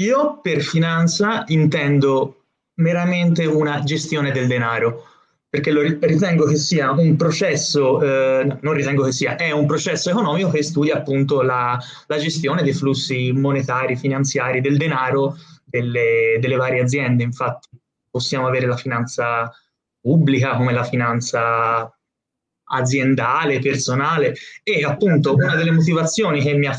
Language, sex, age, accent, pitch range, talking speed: Italian, male, 20-39, native, 130-155 Hz, 135 wpm